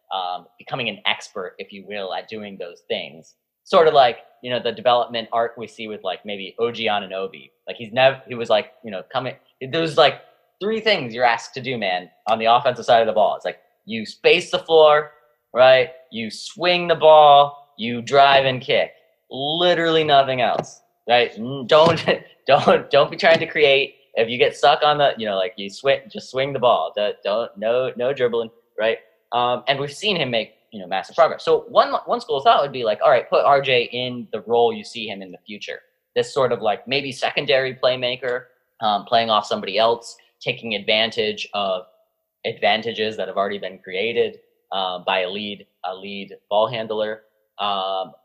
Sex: male